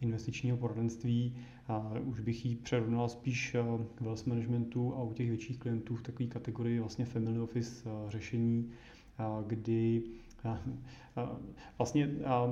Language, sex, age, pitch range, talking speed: Czech, male, 30-49, 115-130 Hz, 115 wpm